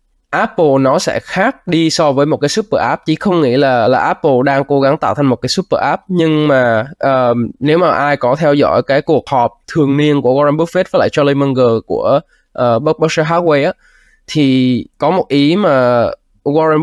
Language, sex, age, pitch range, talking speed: Vietnamese, male, 20-39, 130-160 Hz, 205 wpm